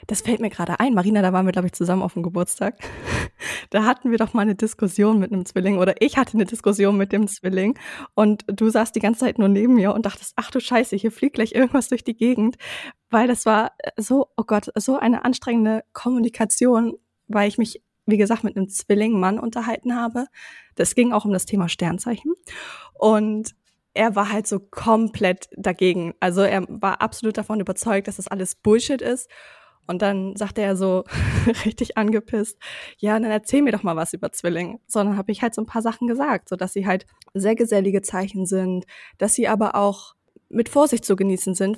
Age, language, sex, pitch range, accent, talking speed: 20-39, German, female, 195-235 Hz, German, 200 wpm